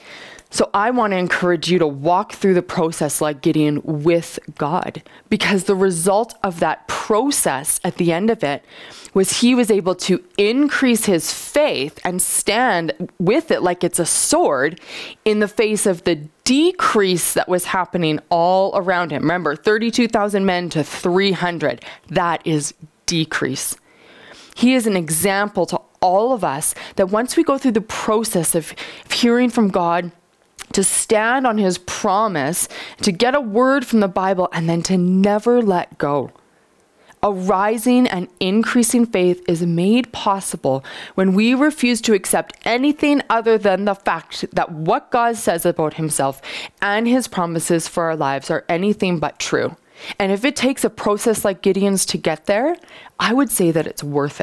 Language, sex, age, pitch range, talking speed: English, female, 20-39, 170-225 Hz, 165 wpm